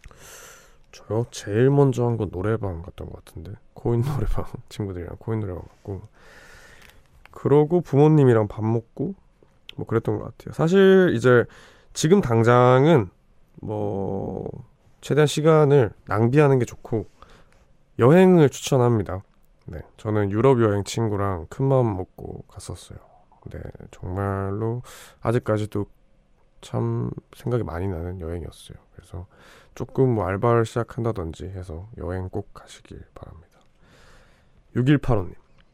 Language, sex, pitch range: Korean, male, 90-125 Hz